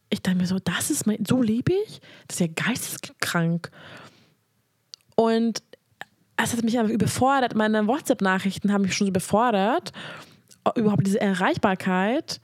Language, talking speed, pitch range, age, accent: German, 145 wpm, 180-225 Hz, 20-39, German